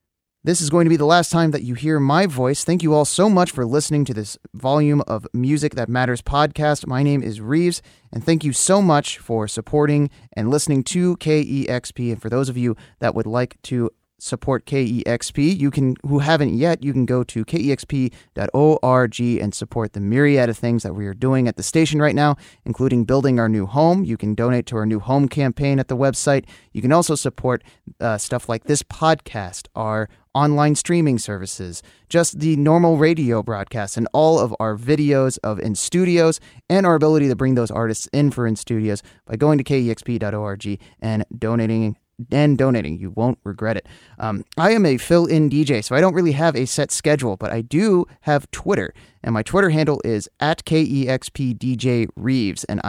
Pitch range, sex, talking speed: 115-150 Hz, male, 195 wpm